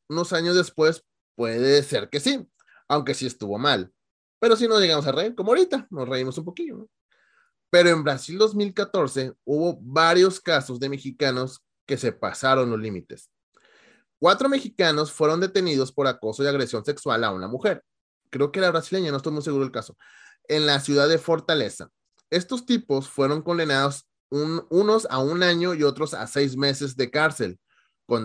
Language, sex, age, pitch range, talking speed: English, male, 30-49, 130-175 Hz, 175 wpm